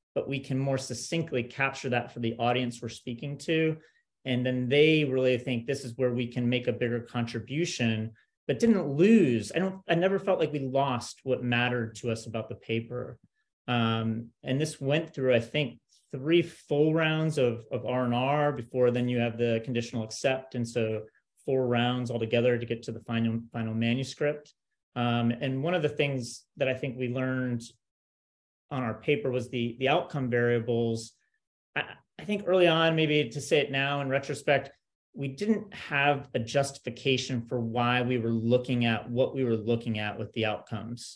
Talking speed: 185 wpm